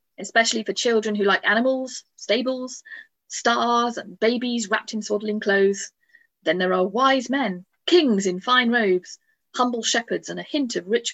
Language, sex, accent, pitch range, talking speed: English, female, British, 190-260 Hz, 160 wpm